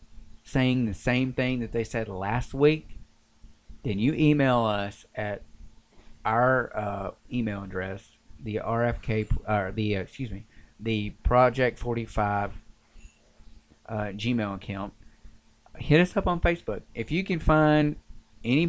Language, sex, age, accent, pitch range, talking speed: English, male, 30-49, American, 105-130 Hz, 130 wpm